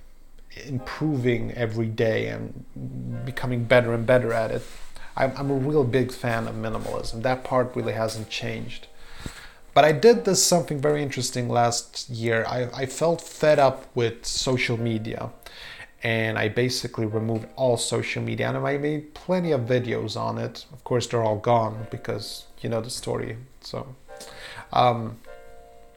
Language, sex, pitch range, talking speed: English, male, 115-140 Hz, 155 wpm